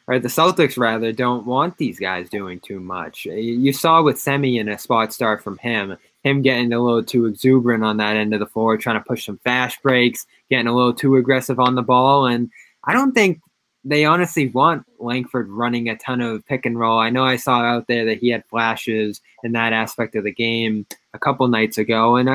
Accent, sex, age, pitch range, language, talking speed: American, male, 20-39, 115-150 Hz, English, 225 wpm